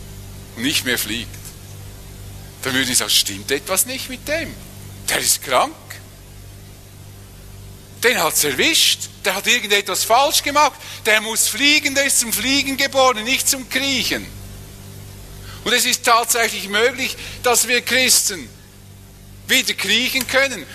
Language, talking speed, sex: English, 135 wpm, male